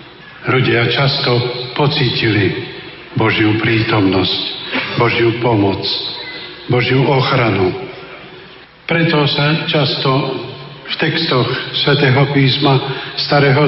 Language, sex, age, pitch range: Slovak, male, 50-69, 115-135 Hz